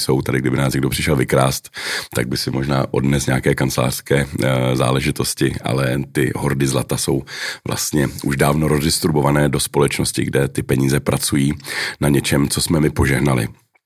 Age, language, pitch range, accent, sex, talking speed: 40-59, Czech, 70-80 Hz, native, male, 155 wpm